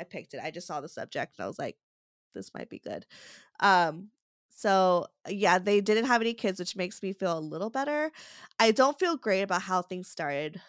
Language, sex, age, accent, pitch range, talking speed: English, female, 20-39, American, 175-220 Hz, 220 wpm